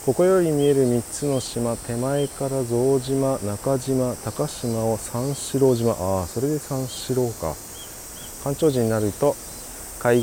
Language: Japanese